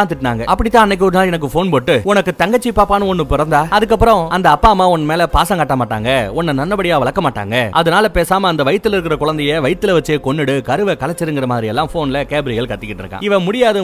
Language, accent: Tamil, native